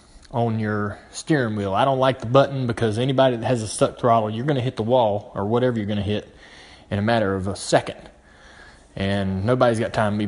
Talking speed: 220 wpm